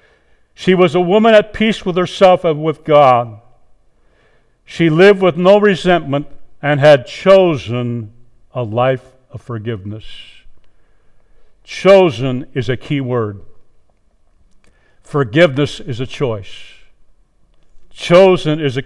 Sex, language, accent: male, English, American